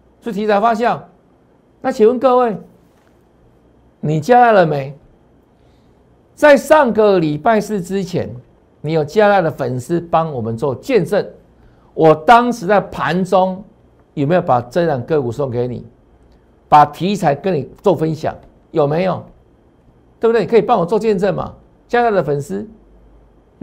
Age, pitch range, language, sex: 60-79, 135-205 Hz, Chinese, male